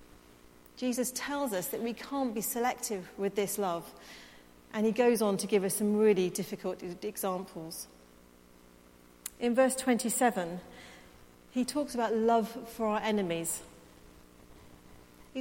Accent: British